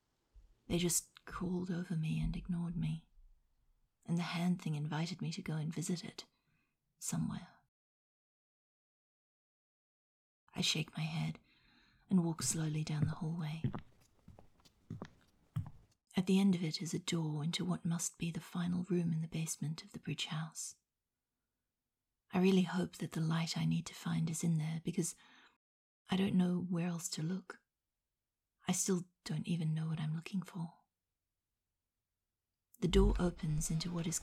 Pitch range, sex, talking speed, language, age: 155-180 Hz, female, 155 wpm, English, 40-59